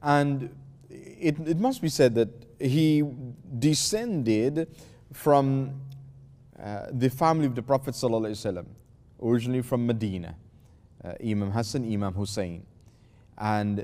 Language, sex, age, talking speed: English, male, 30-49, 115 wpm